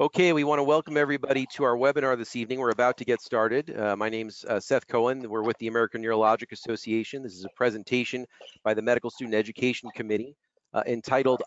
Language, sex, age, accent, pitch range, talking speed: English, male, 40-59, American, 110-125 Hz, 210 wpm